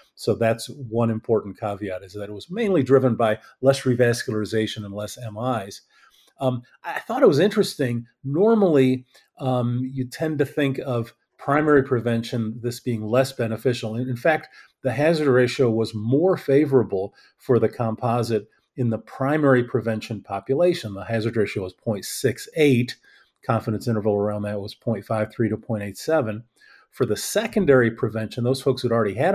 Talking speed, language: 150 wpm, English